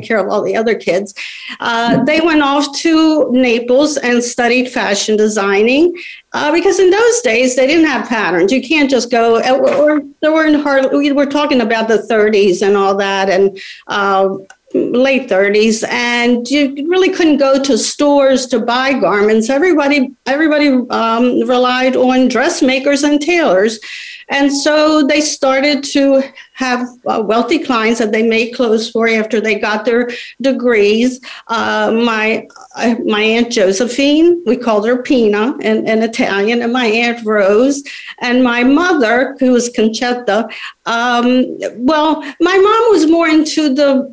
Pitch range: 225-280 Hz